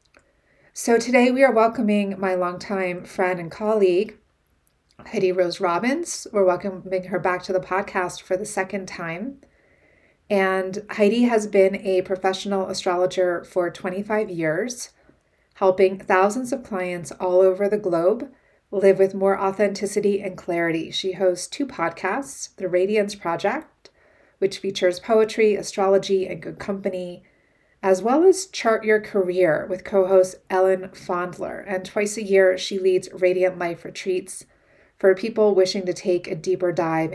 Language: English